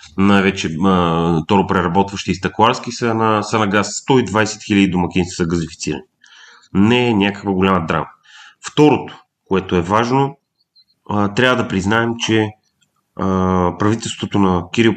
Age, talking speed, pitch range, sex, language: 30-49, 130 wpm, 95-115 Hz, male, Bulgarian